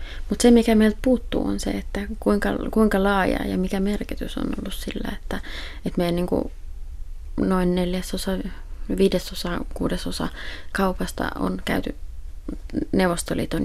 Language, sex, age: Finnish, female, 20-39